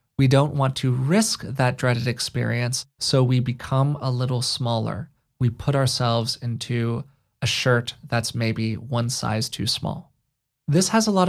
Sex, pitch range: male, 125-145 Hz